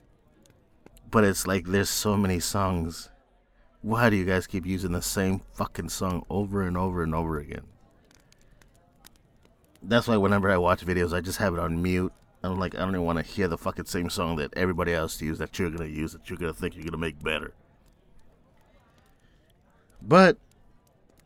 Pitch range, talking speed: 85-105 Hz, 190 wpm